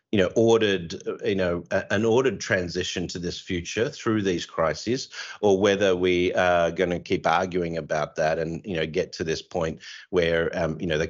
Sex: male